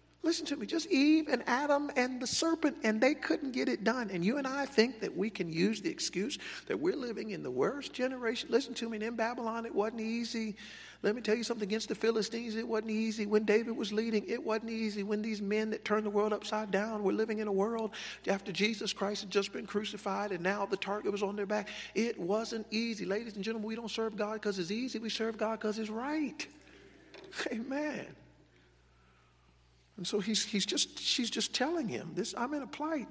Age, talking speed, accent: 50-69, 225 wpm, American